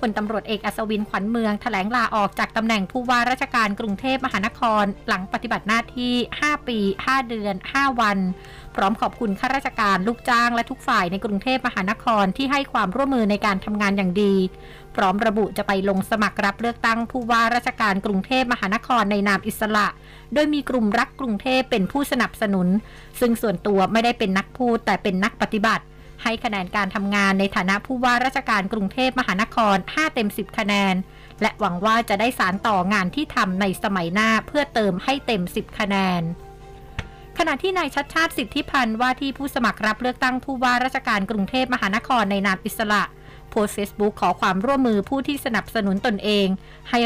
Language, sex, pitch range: Thai, female, 200-245 Hz